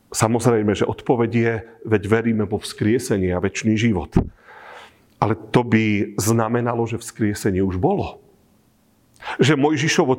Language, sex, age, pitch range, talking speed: Slovak, male, 40-59, 115-160 Hz, 125 wpm